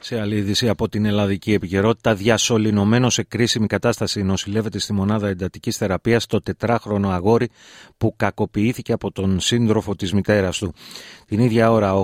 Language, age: Greek, 30-49